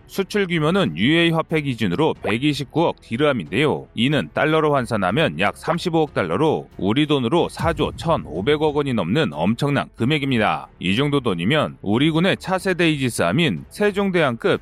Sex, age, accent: male, 40-59, native